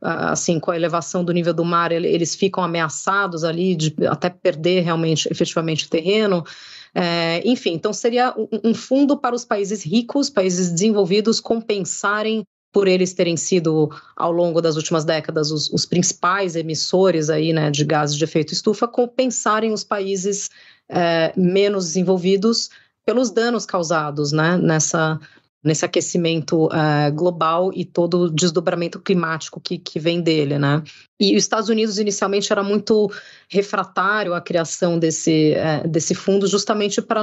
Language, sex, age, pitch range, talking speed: Portuguese, female, 30-49, 170-210 Hz, 145 wpm